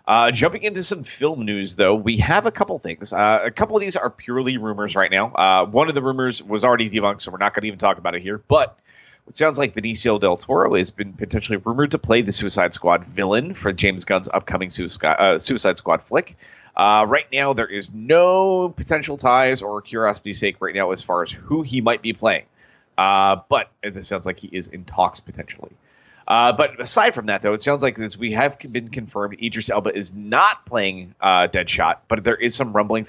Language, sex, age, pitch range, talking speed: English, male, 30-49, 100-130 Hz, 225 wpm